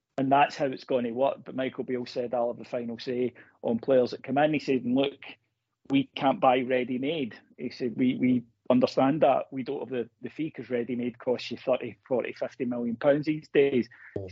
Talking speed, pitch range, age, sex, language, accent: 220 wpm, 125-145 Hz, 40-59, male, English, British